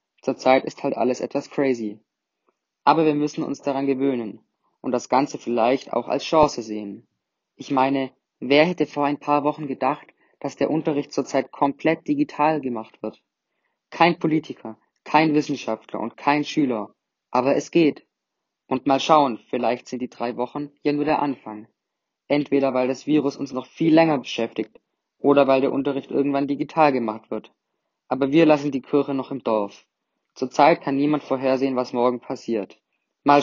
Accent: German